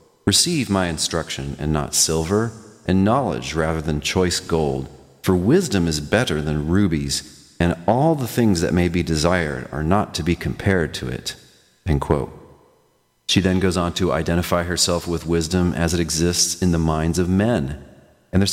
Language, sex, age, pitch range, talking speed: English, male, 40-59, 75-95 Hz, 175 wpm